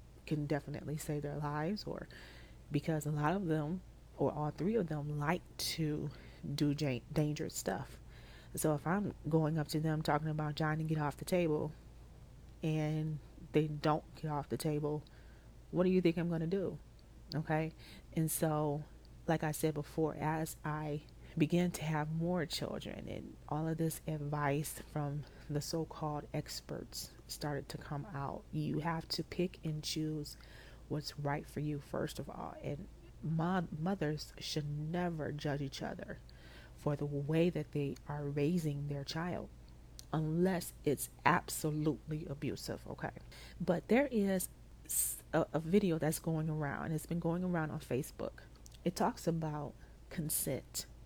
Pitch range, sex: 145-160 Hz, female